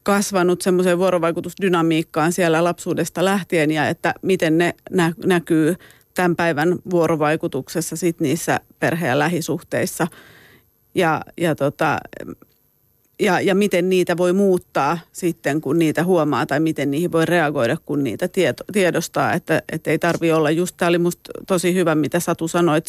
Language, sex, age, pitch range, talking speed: Finnish, female, 30-49, 165-180 Hz, 140 wpm